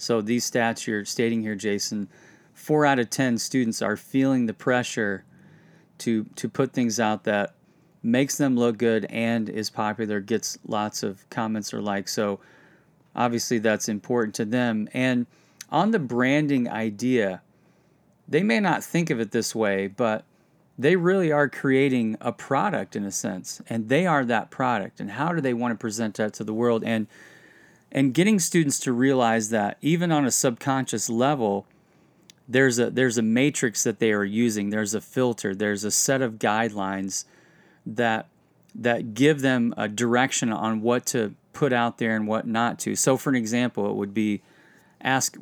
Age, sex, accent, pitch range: 30-49, male, American, 110-135 Hz